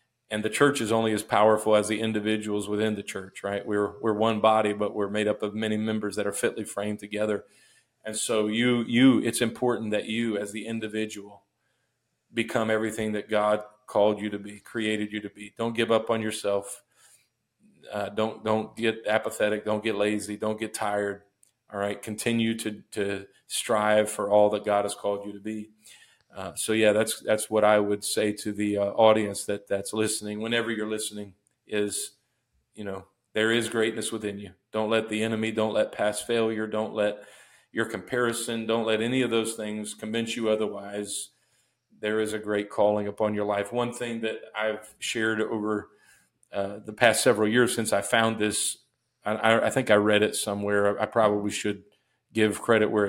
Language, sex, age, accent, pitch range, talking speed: English, male, 40-59, American, 105-110 Hz, 190 wpm